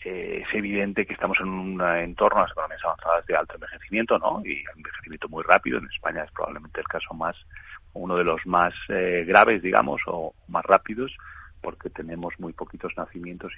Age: 30-49